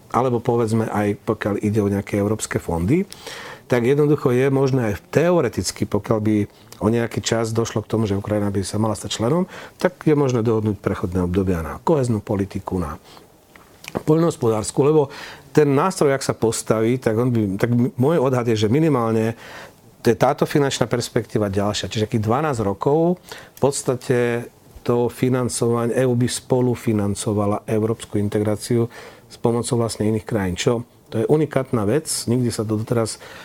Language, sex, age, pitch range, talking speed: Slovak, male, 40-59, 105-125 Hz, 160 wpm